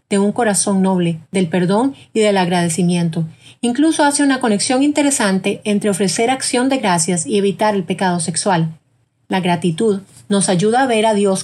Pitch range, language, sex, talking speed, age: 175-215 Hz, Spanish, female, 170 wpm, 30-49